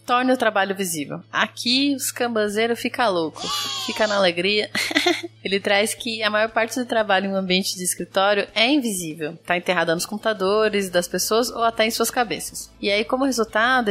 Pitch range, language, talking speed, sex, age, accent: 195-245 Hz, Portuguese, 180 wpm, female, 20-39, Brazilian